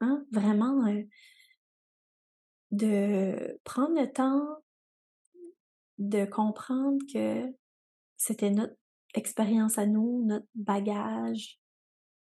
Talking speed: 80 wpm